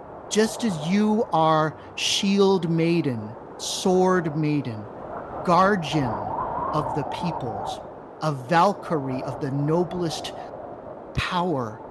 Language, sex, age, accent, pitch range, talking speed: English, male, 40-59, American, 145-185 Hz, 90 wpm